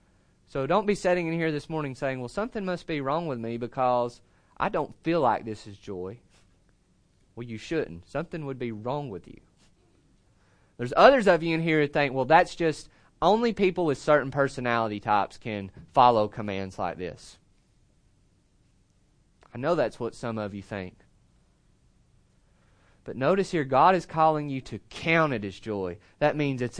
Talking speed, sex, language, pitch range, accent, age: 175 wpm, male, English, 130-195 Hz, American, 30-49